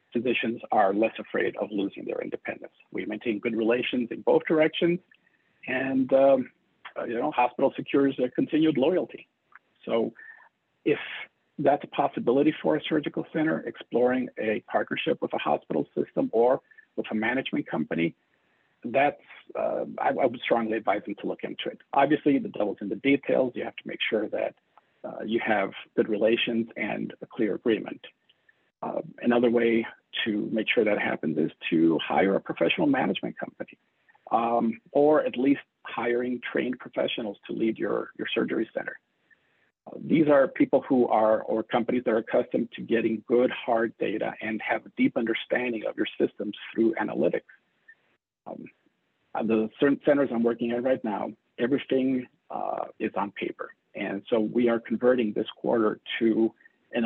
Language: English